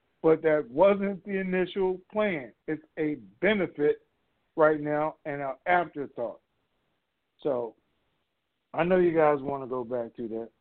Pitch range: 130-160 Hz